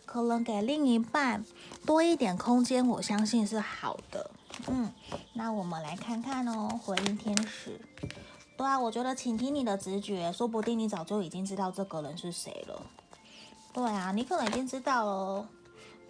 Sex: female